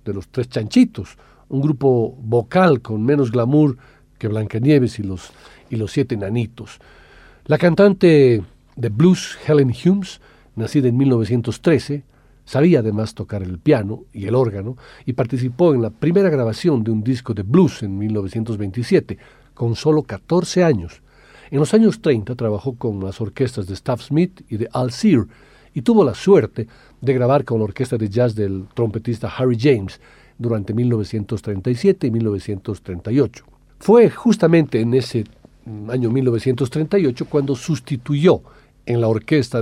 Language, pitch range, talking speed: Spanish, 110-145 Hz, 145 wpm